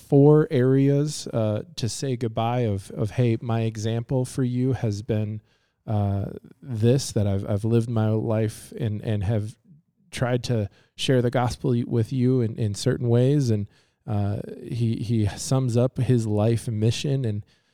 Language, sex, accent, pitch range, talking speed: English, male, American, 110-125 Hz, 160 wpm